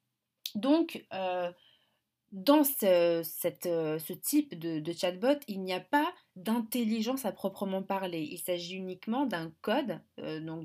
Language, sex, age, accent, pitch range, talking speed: French, female, 20-39, French, 175-230 Hz, 130 wpm